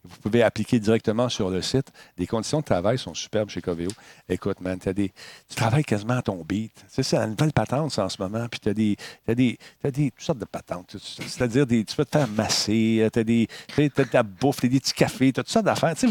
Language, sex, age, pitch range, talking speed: French, male, 50-69, 110-140 Hz, 240 wpm